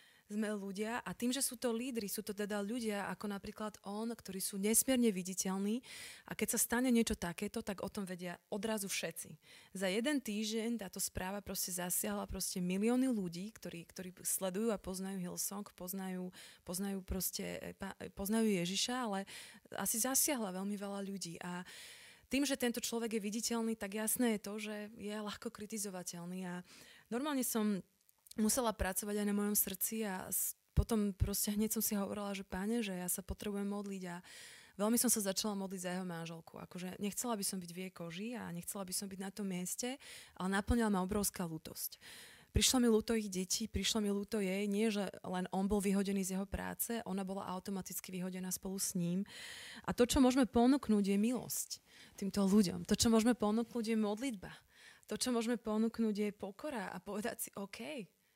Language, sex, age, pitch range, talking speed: Slovak, female, 20-39, 190-225 Hz, 180 wpm